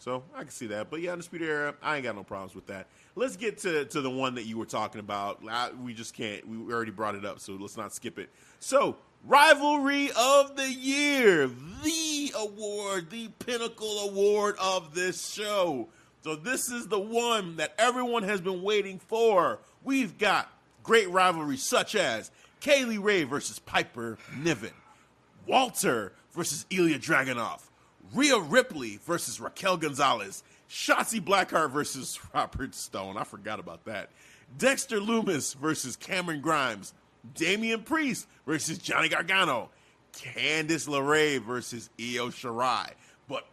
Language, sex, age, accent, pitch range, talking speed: English, male, 30-49, American, 145-240 Hz, 155 wpm